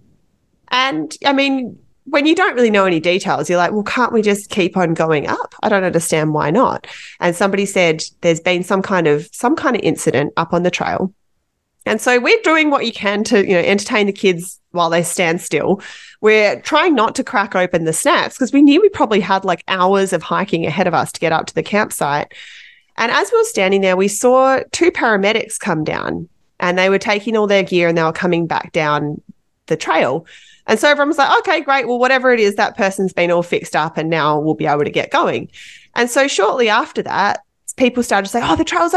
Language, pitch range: English, 175-270 Hz